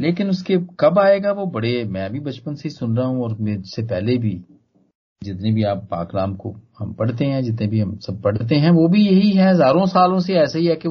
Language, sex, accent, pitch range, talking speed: Hindi, male, native, 110-165 Hz, 240 wpm